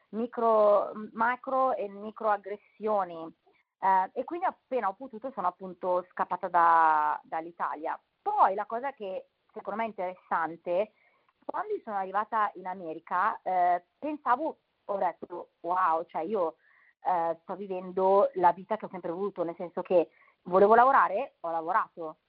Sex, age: female, 30-49